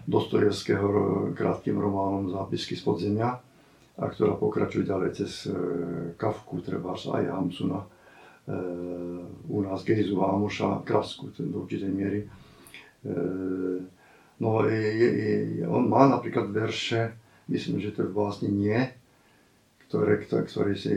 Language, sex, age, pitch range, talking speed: Slovak, male, 50-69, 100-125 Hz, 105 wpm